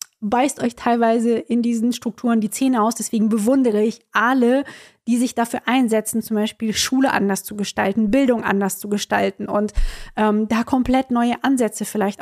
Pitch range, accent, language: 220-260 Hz, German, German